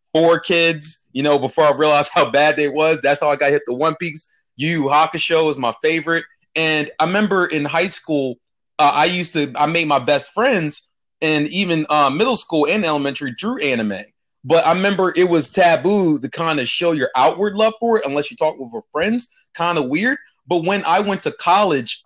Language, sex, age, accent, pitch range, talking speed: English, male, 30-49, American, 135-165 Hz, 215 wpm